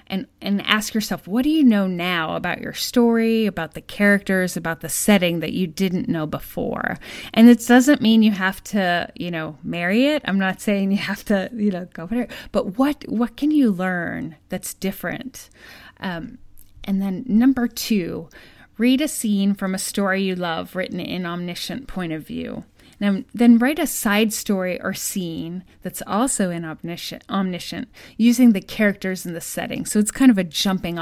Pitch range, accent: 175-220 Hz, American